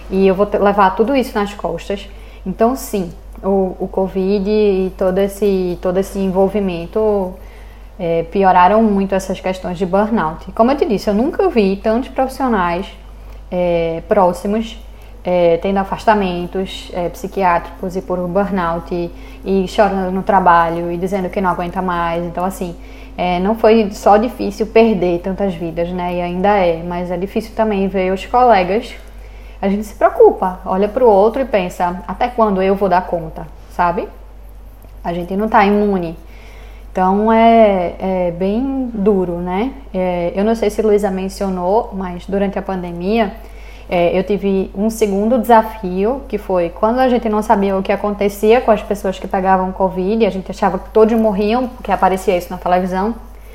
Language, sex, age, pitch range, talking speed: Portuguese, female, 10-29, 180-215 Hz, 170 wpm